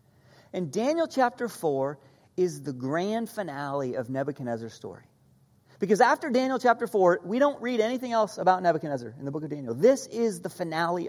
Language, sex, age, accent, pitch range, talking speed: English, male, 40-59, American, 140-220 Hz, 175 wpm